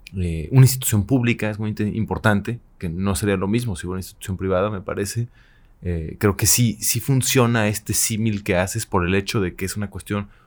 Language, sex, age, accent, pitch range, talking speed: English, male, 30-49, Mexican, 95-110 Hz, 220 wpm